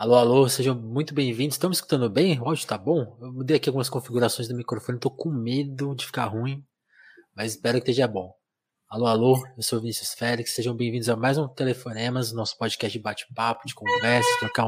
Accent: Brazilian